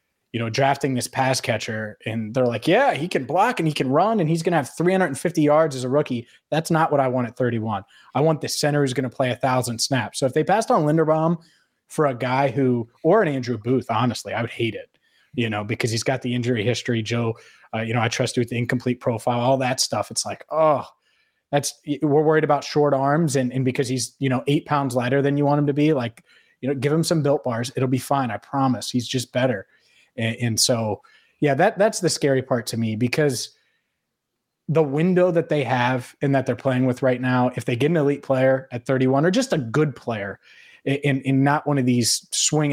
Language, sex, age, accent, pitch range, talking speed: English, male, 20-39, American, 120-150 Hz, 235 wpm